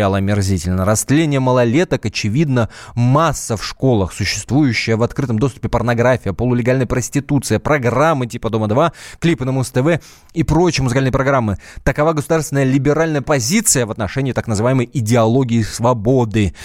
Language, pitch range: Russian, 95-140 Hz